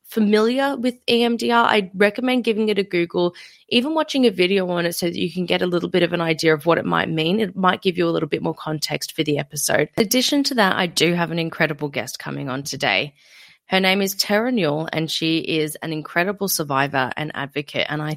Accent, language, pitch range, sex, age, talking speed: Australian, English, 160-205 Hz, female, 20-39, 235 wpm